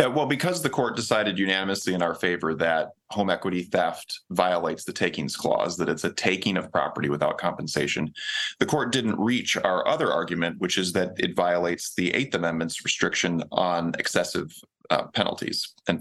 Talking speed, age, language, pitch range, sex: 170 wpm, 30-49, English, 85-105 Hz, male